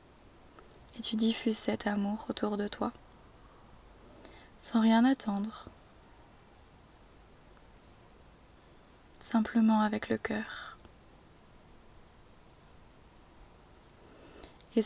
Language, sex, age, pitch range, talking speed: French, female, 20-39, 205-230 Hz, 65 wpm